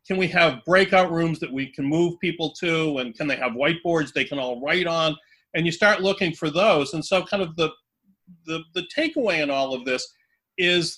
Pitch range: 135-175 Hz